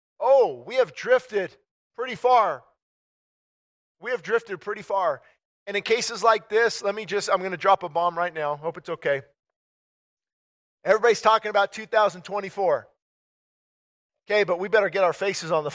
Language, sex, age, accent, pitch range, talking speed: English, male, 50-69, American, 170-215 Hz, 165 wpm